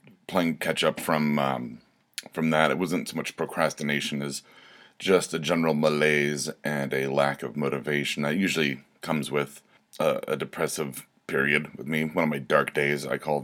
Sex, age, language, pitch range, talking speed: male, 30-49, English, 70-90 Hz, 170 wpm